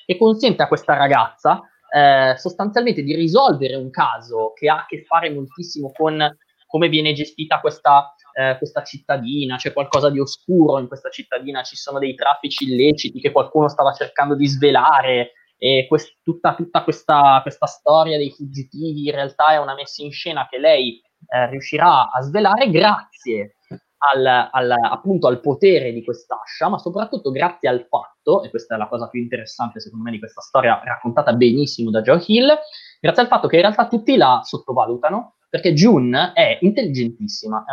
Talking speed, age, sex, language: 170 wpm, 20-39, male, Italian